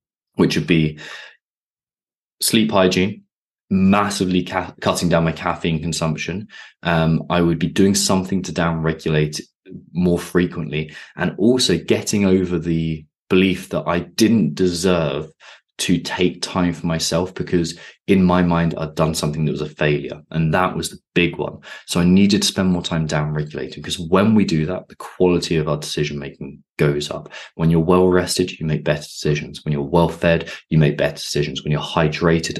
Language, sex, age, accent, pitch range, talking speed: English, male, 20-39, British, 75-90 Hz, 170 wpm